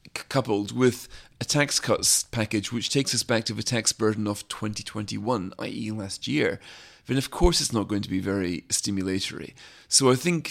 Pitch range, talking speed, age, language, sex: 105-120 Hz, 185 wpm, 30-49, English, male